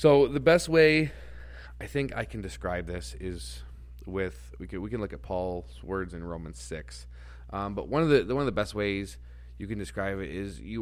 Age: 30-49